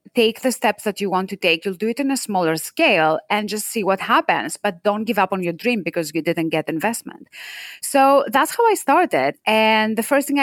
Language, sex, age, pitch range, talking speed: English, female, 30-49, 165-210 Hz, 235 wpm